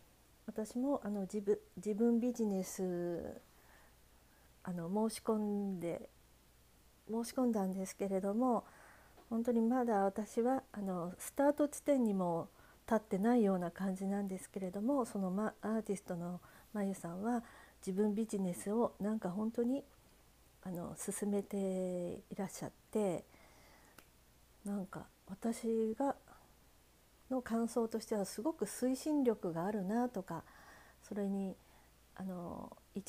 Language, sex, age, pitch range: Japanese, female, 50-69, 190-235 Hz